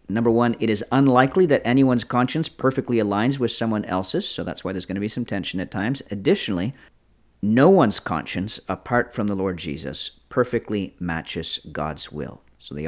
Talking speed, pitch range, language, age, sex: 180 wpm, 90-120 Hz, English, 50-69, male